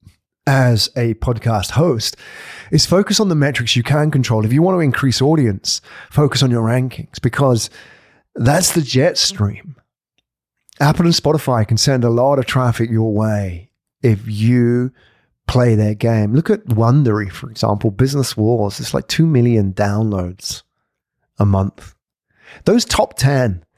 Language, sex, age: English, male, 30-49